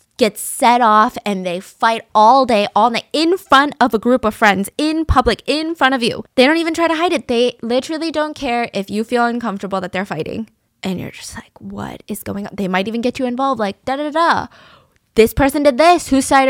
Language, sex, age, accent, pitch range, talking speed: English, female, 10-29, American, 195-260 Hz, 235 wpm